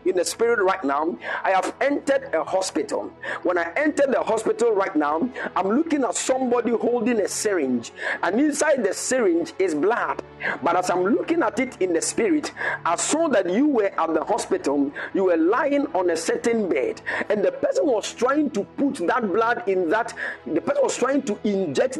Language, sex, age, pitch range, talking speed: English, male, 50-69, 225-320 Hz, 195 wpm